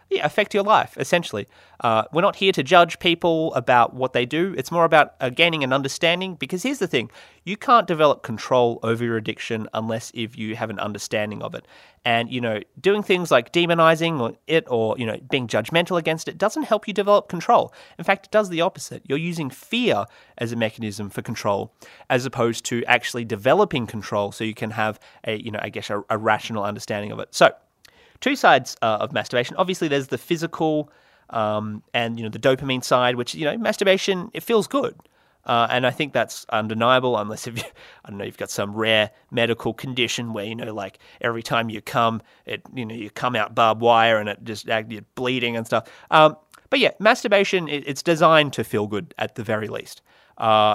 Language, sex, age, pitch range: English, male, 30-49, 110-165 Hz